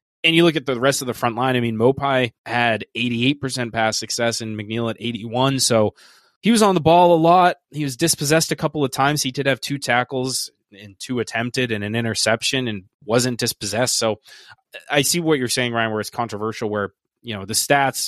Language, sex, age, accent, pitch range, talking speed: English, male, 20-39, American, 110-130 Hz, 215 wpm